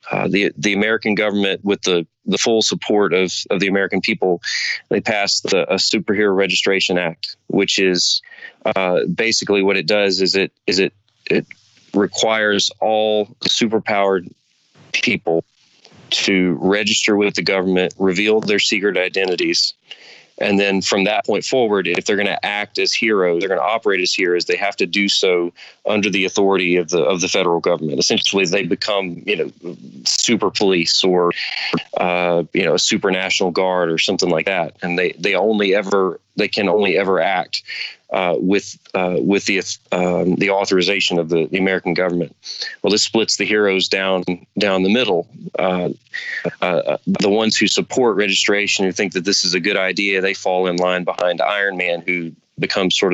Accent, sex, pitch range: American, male, 90-105 Hz